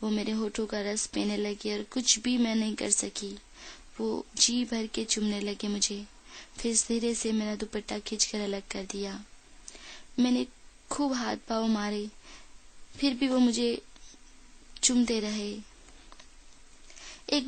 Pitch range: 210-250 Hz